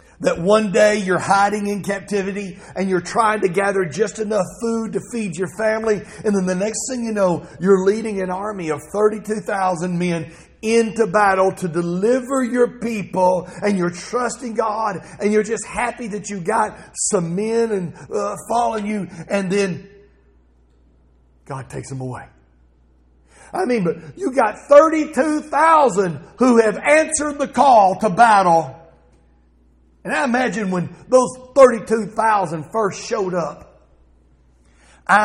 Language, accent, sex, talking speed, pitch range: English, American, male, 150 wpm, 155-225 Hz